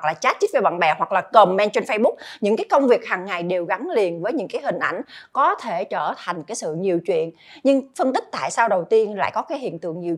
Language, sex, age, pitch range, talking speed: Vietnamese, female, 20-39, 185-260 Hz, 270 wpm